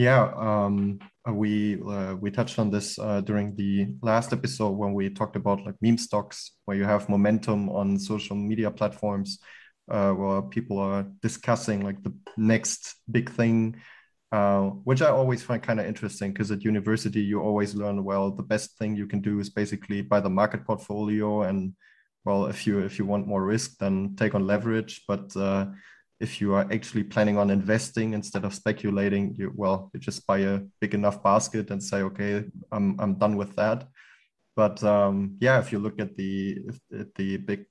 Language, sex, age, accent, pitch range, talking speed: English, male, 20-39, German, 100-105 Hz, 190 wpm